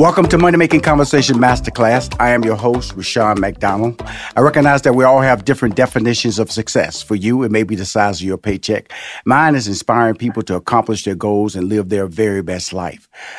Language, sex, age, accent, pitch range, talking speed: English, male, 40-59, American, 105-135 Hz, 205 wpm